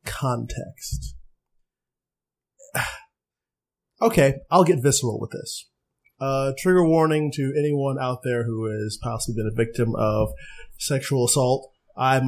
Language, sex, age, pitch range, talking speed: English, male, 30-49, 115-145 Hz, 115 wpm